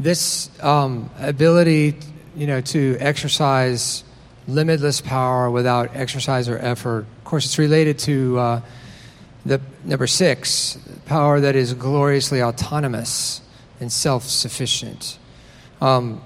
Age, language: 40-59, English